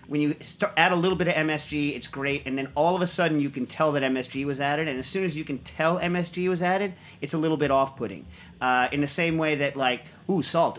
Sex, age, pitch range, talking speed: male, 40-59, 135-165 Hz, 255 wpm